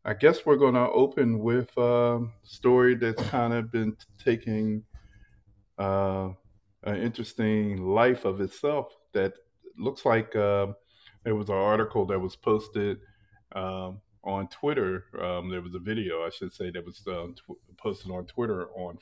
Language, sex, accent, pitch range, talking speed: English, male, American, 95-120 Hz, 155 wpm